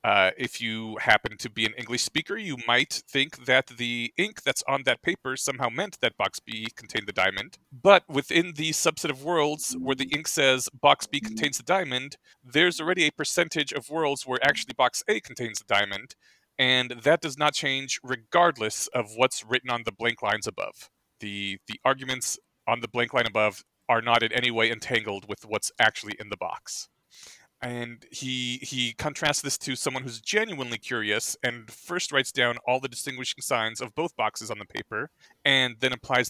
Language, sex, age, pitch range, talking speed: English, male, 30-49, 120-145 Hz, 190 wpm